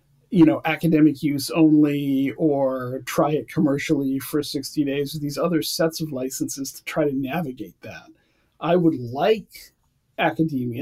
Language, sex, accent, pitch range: English, male, American, 135-160 Hz